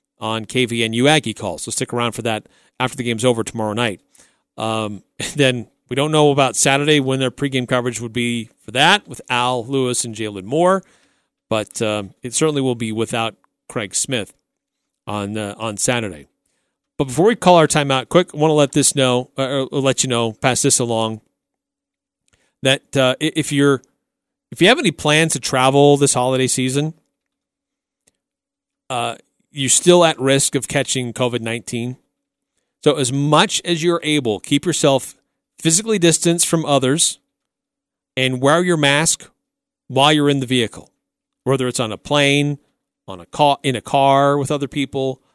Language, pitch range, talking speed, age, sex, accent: English, 120-155 Hz, 170 wpm, 40-59, male, American